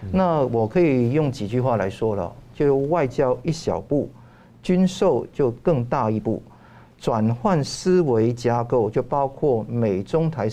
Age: 50-69